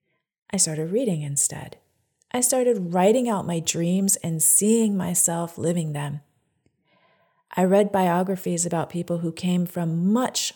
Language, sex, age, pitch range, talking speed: English, female, 40-59, 150-195 Hz, 135 wpm